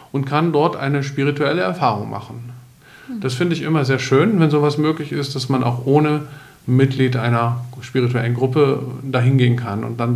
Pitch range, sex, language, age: 125-155 Hz, male, German, 50-69